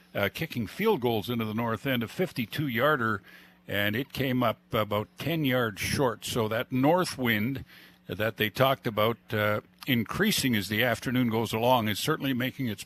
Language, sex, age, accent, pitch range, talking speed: English, male, 50-69, American, 110-145 Hz, 175 wpm